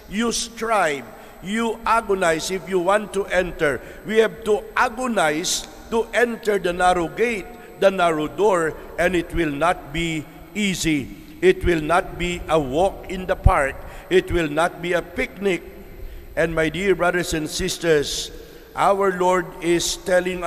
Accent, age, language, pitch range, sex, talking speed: Filipino, 60-79, English, 155-190 Hz, male, 150 wpm